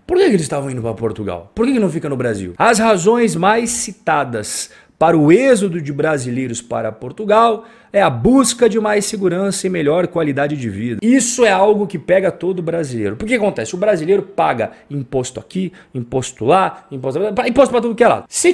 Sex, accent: male, Brazilian